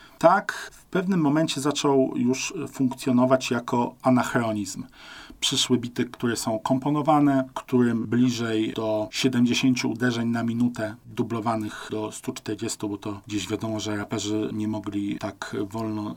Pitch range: 115-145 Hz